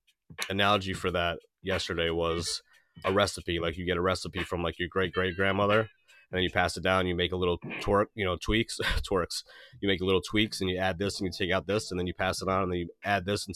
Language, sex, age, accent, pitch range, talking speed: English, male, 30-49, American, 85-95 Hz, 255 wpm